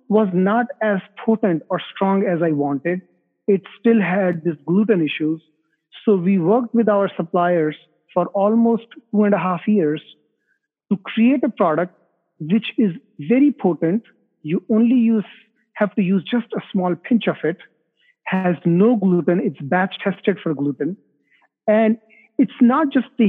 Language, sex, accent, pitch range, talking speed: English, male, Indian, 175-220 Hz, 155 wpm